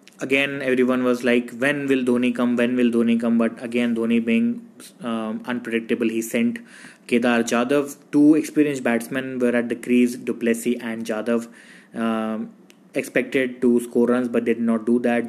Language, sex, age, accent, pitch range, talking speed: English, male, 20-39, Indian, 115-125 Hz, 165 wpm